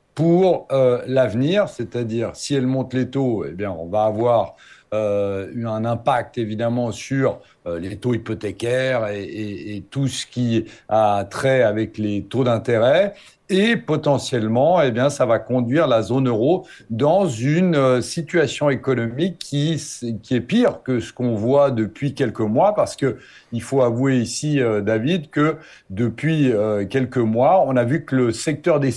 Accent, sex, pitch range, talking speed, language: French, male, 120-160 Hz, 160 wpm, French